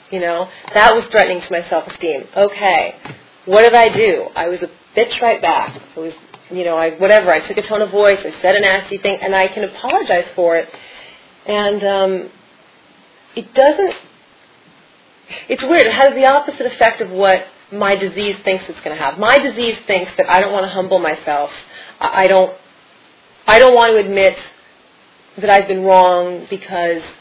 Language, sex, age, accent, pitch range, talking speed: English, female, 30-49, American, 180-215 Hz, 185 wpm